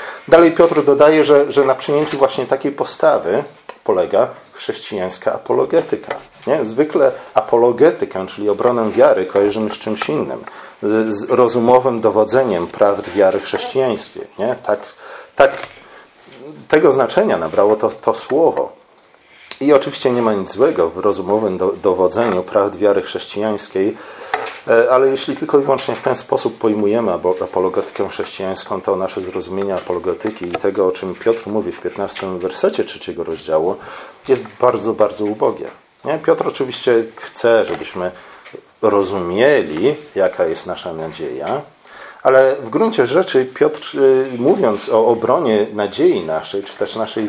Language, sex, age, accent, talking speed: Polish, male, 40-59, native, 135 wpm